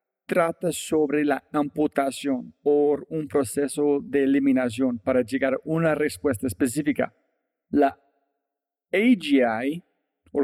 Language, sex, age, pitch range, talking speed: Spanish, male, 40-59, 135-210 Hz, 105 wpm